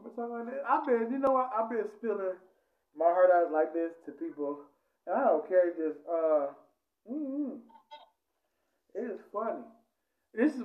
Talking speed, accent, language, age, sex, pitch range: 160 wpm, American, English, 20-39, male, 145-210 Hz